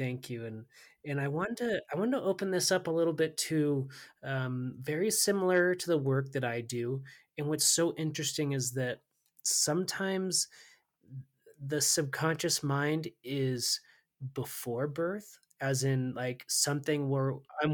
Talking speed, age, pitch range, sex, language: 145 wpm, 20-39, 130-160 Hz, male, English